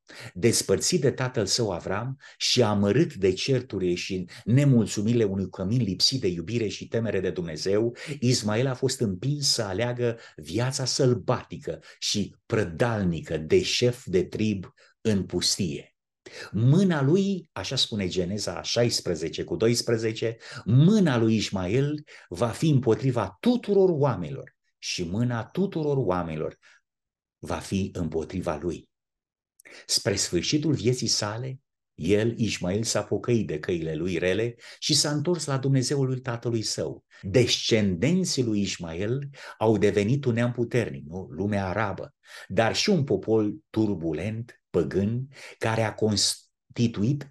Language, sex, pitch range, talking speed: Romanian, male, 100-130 Hz, 125 wpm